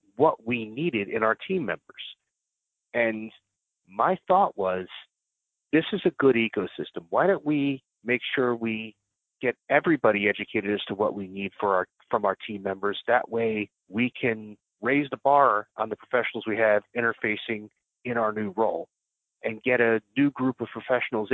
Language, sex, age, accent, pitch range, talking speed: English, male, 30-49, American, 100-125 Hz, 170 wpm